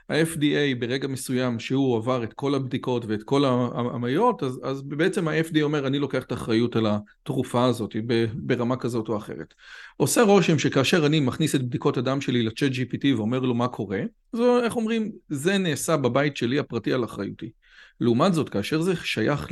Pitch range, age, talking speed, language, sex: 125-160 Hz, 40-59, 175 wpm, Hebrew, male